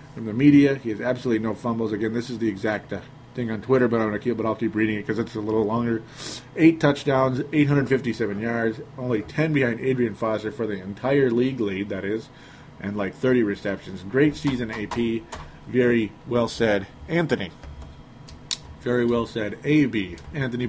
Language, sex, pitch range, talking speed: English, male, 110-140 Hz, 190 wpm